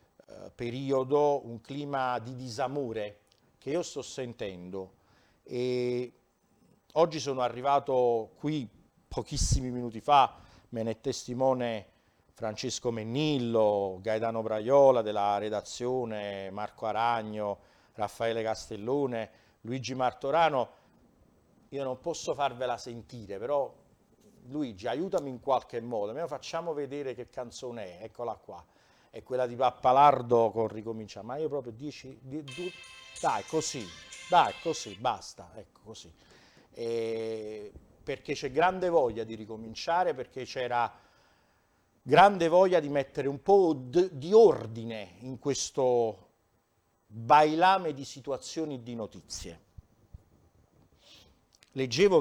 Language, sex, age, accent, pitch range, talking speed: Italian, male, 50-69, native, 105-135 Hz, 110 wpm